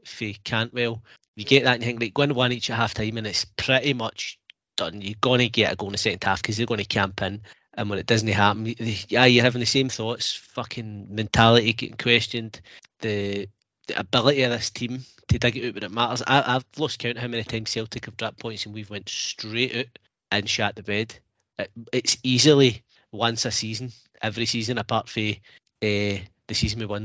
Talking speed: 225 wpm